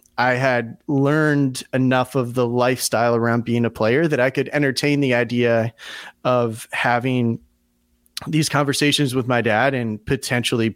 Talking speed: 145 wpm